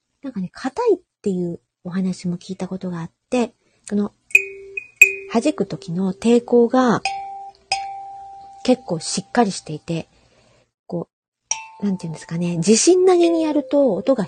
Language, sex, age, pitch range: Japanese, female, 40-59, 180-265 Hz